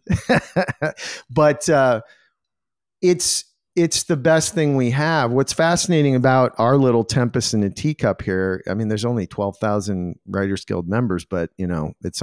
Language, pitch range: English, 105-145 Hz